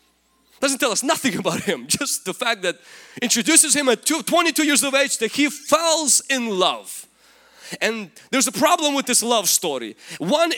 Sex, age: male, 30-49